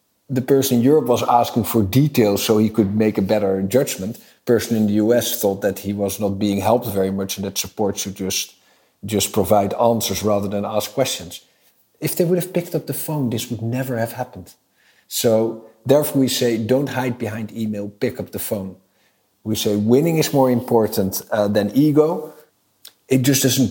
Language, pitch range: English, 100-120 Hz